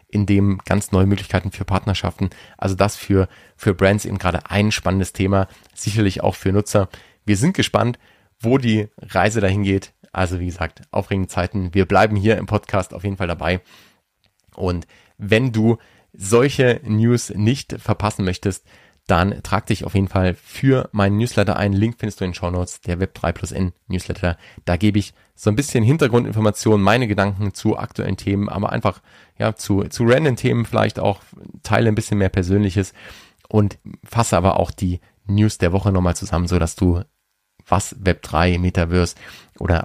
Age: 30-49